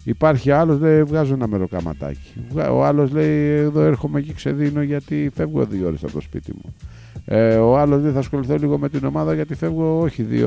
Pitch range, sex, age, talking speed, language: 100-155 Hz, male, 50-69, 195 wpm, Greek